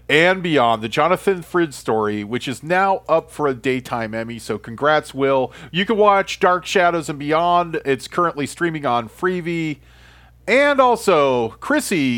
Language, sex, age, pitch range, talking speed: English, male, 40-59, 135-205 Hz, 160 wpm